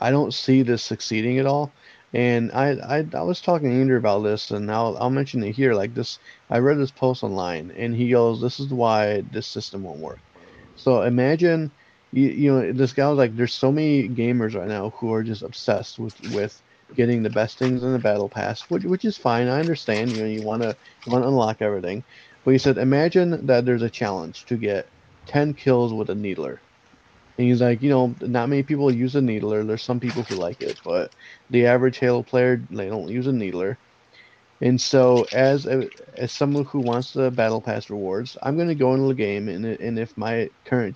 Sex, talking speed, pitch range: male, 225 wpm, 115-135 Hz